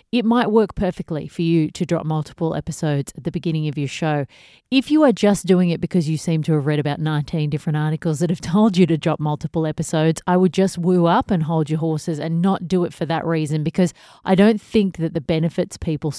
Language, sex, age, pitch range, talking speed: English, female, 30-49, 155-185 Hz, 235 wpm